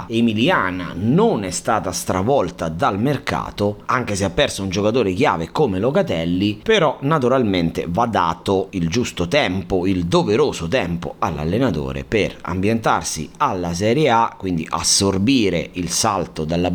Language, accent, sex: Italian, native, male